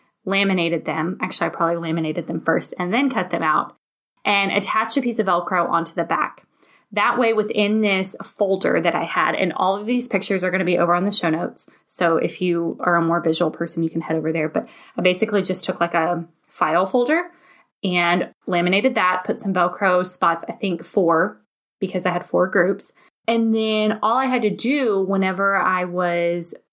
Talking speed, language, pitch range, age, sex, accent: 205 wpm, English, 170-205 Hz, 10-29, female, American